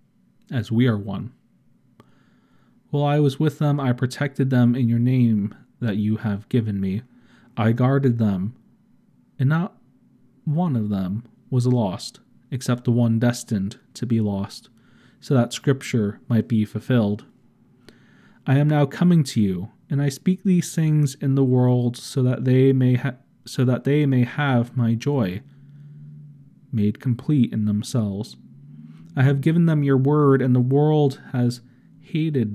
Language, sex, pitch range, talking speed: English, male, 115-140 Hz, 155 wpm